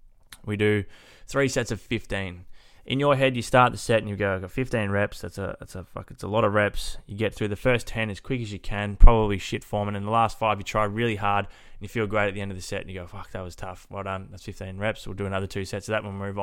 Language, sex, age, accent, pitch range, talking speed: English, male, 20-39, Australian, 100-115 Hz, 310 wpm